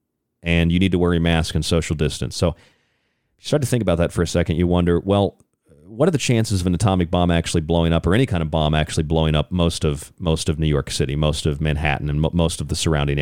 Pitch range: 85-120 Hz